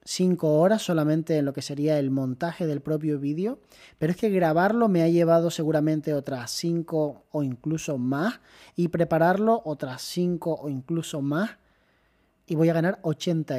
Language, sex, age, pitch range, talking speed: Spanish, male, 20-39, 145-175 Hz, 165 wpm